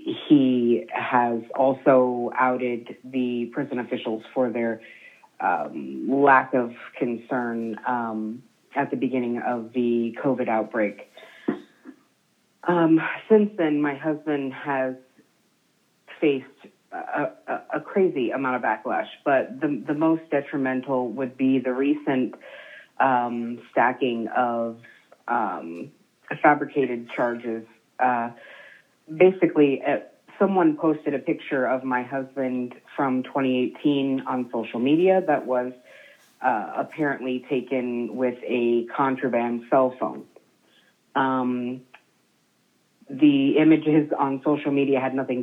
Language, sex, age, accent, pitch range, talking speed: English, female, 30-49, American, 125-145 Hz, 110 wpm